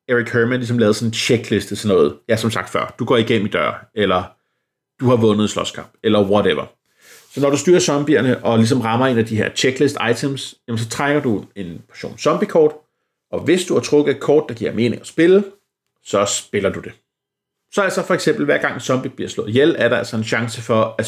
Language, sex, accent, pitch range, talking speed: Danish, male, native, 110-140 Hz, 225 wpm